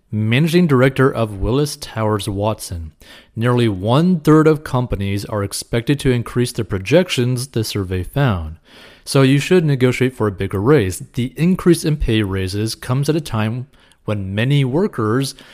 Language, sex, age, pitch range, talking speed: English, male, 30-49, 105-140 Hz, 155 wpm